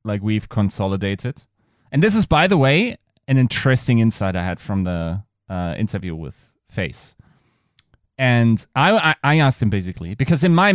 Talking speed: 165 wpm